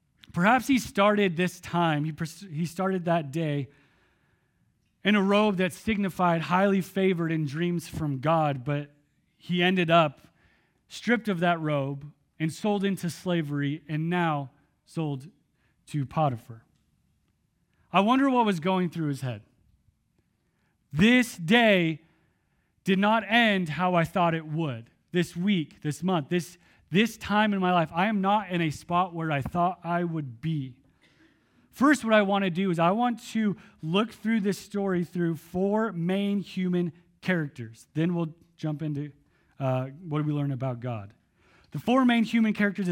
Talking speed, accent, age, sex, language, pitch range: 155 wpm, American, 30-49, male, English, 155-195 Hz